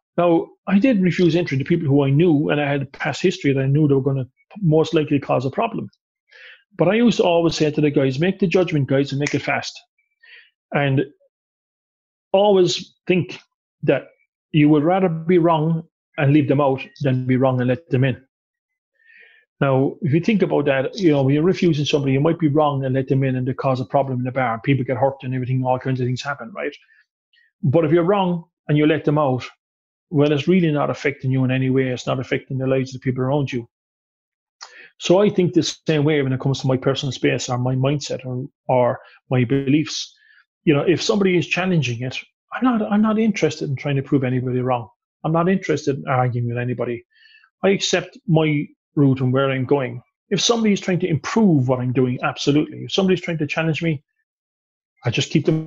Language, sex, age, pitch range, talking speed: English, male, 30-49, 130-180 Hz, 220 wpm